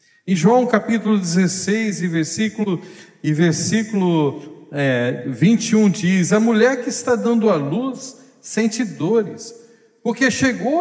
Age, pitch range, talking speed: 50-69, 175-225 Hz, 110 wpm